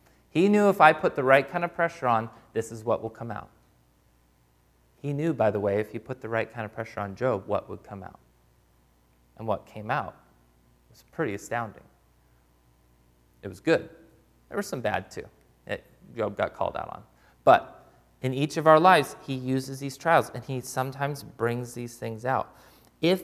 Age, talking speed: 30-49, 190 wpm